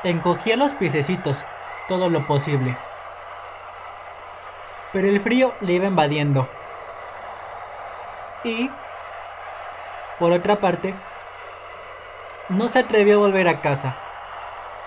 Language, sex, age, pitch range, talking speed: Spanish, male, 20-39, 155-205 Hz, 95 wpm